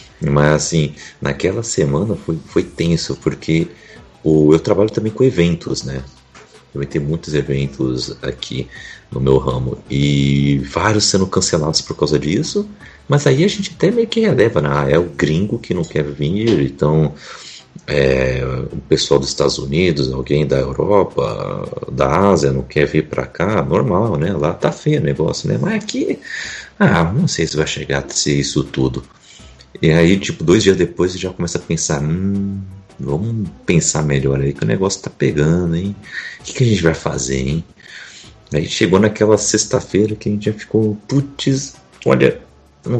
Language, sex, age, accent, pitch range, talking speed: Portuguese, male, 40-59, Brazilian, 70-105 Hz, 175 wpm